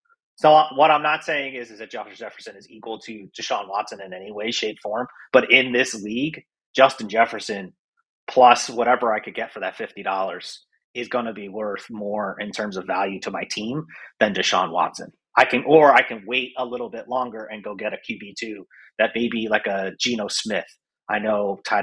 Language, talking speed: English, 205 wpm